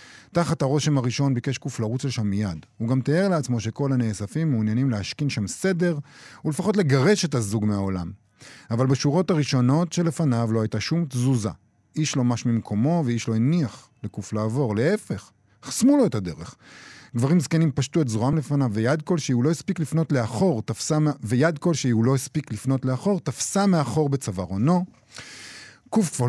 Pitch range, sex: 115-155 Hz, male